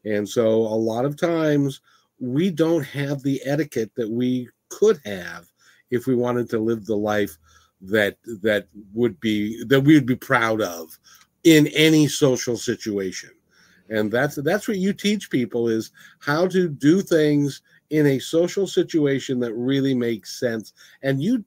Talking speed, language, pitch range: 160 wpm, English, 115-150 Hz